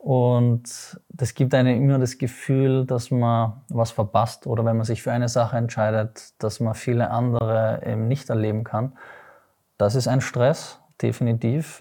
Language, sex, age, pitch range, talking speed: German, male, 20-39, 115-140 Hz, 165 wpm